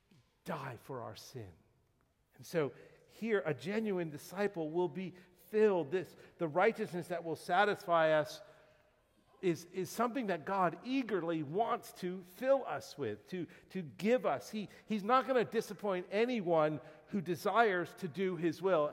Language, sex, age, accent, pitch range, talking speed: English, male, 50-69, American, 165-215 Hz, 150 wpm